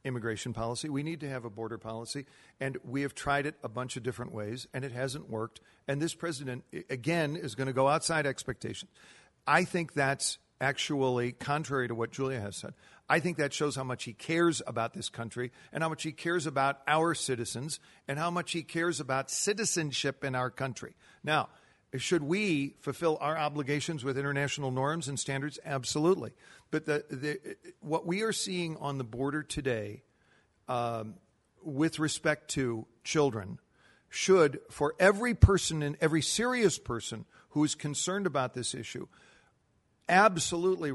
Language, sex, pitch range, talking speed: English, male, 130-160 Hz, 170 wpm